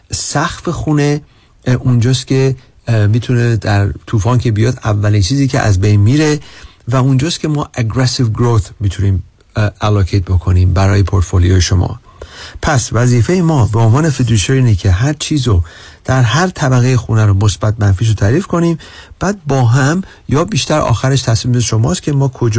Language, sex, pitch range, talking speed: Persian, male, 105-140 Hz, 155 wpm